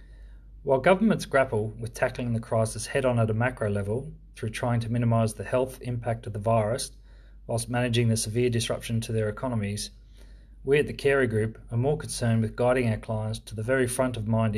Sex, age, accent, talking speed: male, 30-49, Australian, 200 wpm